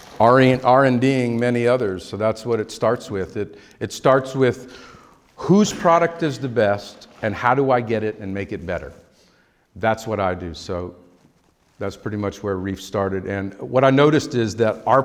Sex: male